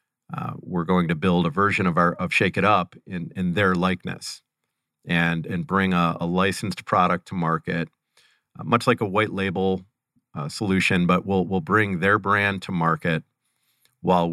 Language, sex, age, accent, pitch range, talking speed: English, male, 40-59, American, 90-105 Hz, 180 wpm